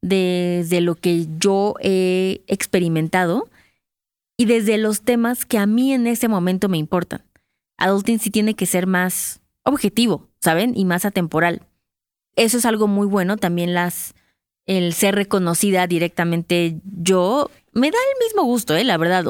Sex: female